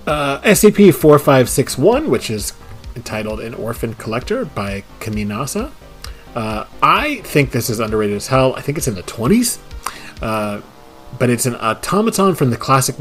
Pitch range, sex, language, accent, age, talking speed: 105-135 Hz, male, English, American, 30-49, 150 wpm